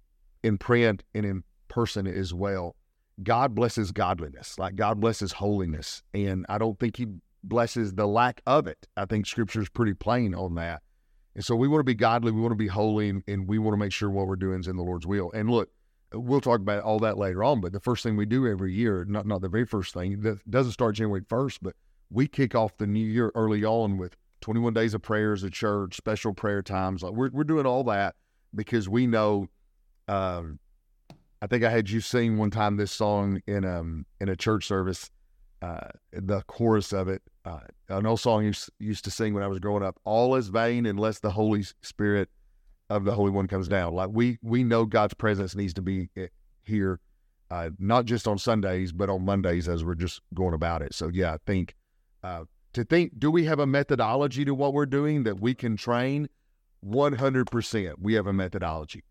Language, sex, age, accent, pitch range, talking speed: English, male, 40-59, American, 95-115 Hz, 215 wpm